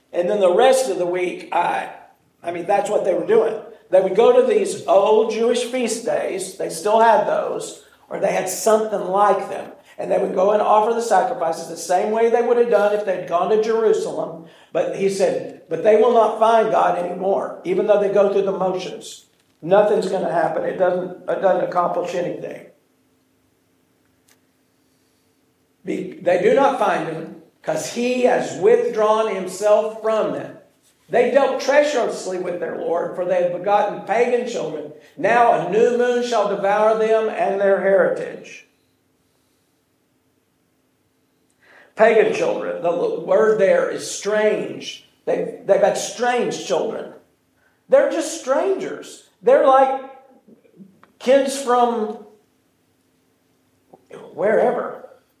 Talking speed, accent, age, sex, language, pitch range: 145 wpm, American, 50-69, male, English, 185-265 Hz